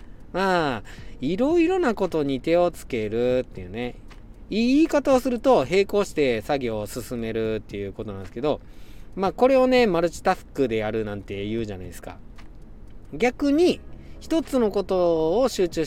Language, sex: Japanese, male